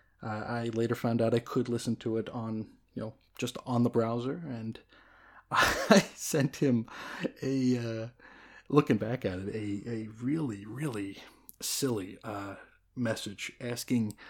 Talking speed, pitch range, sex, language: 150 wpm, 105-125 Hz, male, English